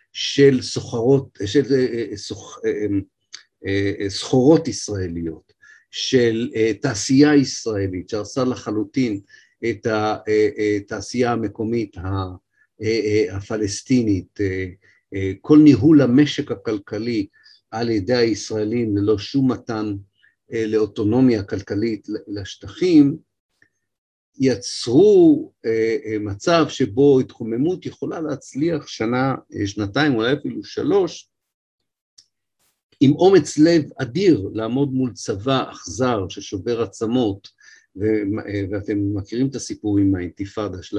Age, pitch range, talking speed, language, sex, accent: 50-69, 100-130 Hz, 85 wpm, Hebrew, male, native